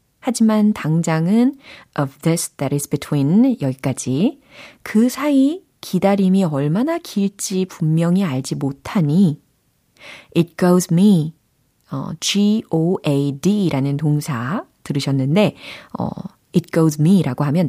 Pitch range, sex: 145-200 Hz, female